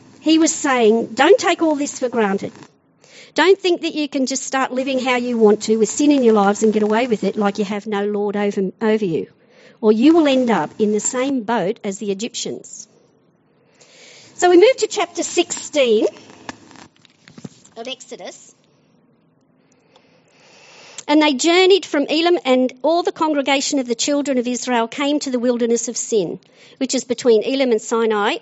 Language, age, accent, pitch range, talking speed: English, 50-69, Australian, 220-285 Hz, 180 wpm